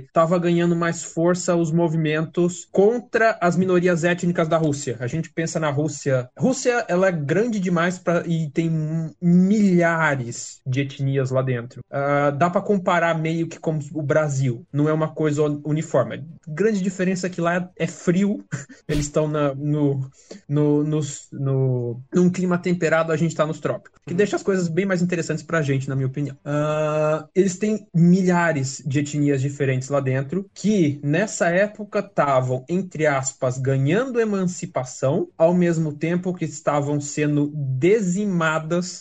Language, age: Portuguese, 20-39